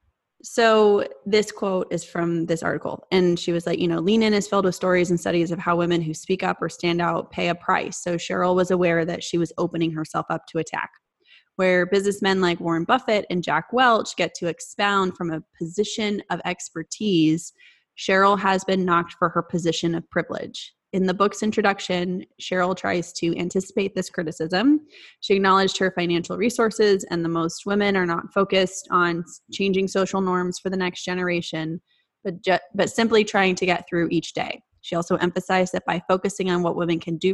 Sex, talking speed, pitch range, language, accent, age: female, 195 wpm, 170-195 Hz, English, American, 20-39